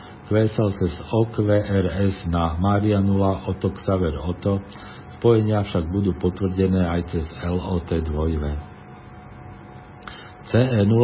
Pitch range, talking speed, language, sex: 90-105 Hz, 85 wpm, Slovak, male